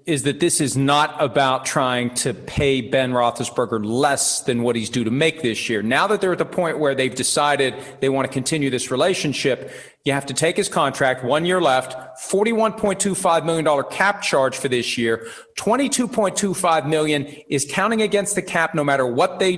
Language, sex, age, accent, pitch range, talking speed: English, male, 40-59, American, 140-190 Hz, 210 wpm